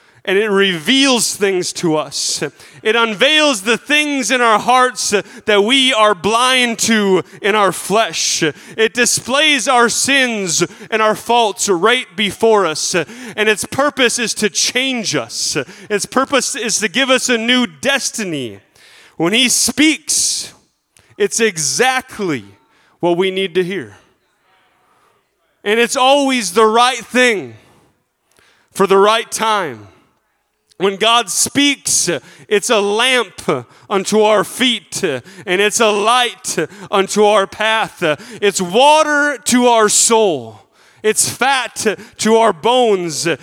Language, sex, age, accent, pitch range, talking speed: English, male, 30-49, American, 195-250 Hz, 130 wpm